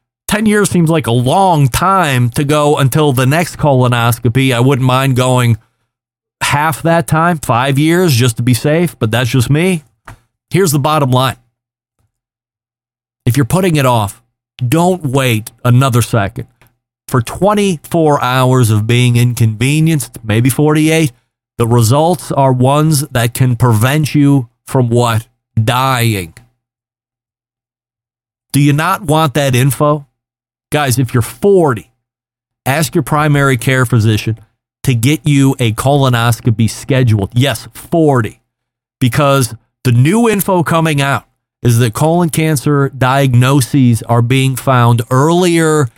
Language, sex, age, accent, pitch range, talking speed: English, male, 30-49, American, 115-145 Hz, 130 wpm